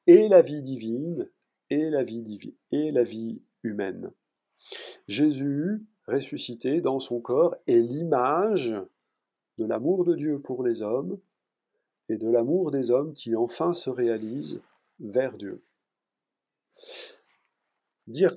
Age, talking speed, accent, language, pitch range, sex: 40-59, 115 wpm, French, French, 115-155 Hz, male